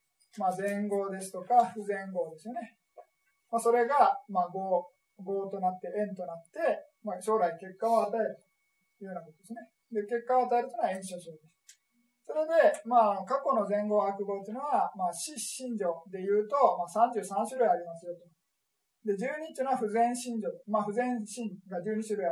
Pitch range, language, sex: 185-245 Hz, Japanese, male